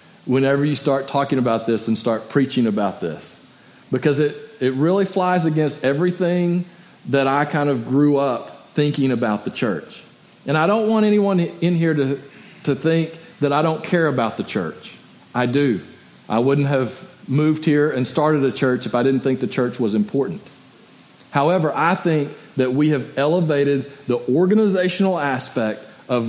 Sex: male